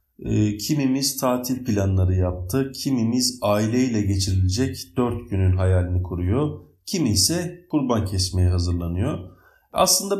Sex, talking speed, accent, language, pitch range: male, 100 wpm, native, Turkish, 95-145 Hz